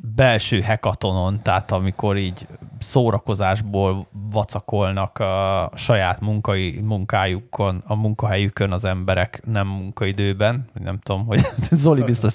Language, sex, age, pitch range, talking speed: Hungarian, male, 20-39, 100-125 Hz, 105 wpm